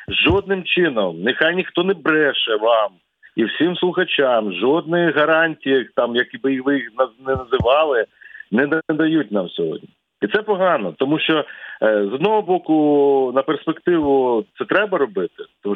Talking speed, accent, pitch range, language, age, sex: 135 wpm, native, 115-155 Hz, Ukrainian, 40-59, male